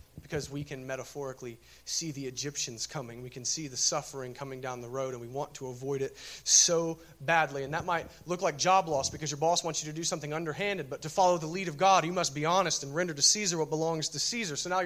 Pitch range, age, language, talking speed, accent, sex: 155-200 Hz, 30-49, English, 250 wpm, American, male